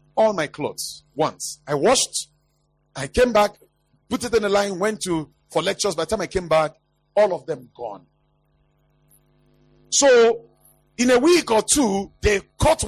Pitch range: 155-245 Hz